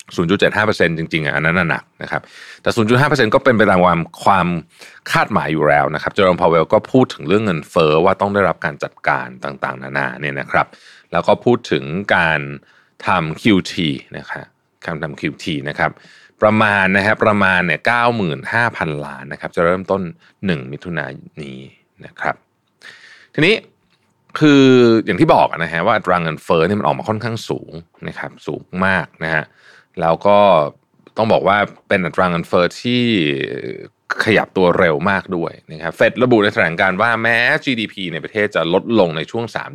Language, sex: Thai, male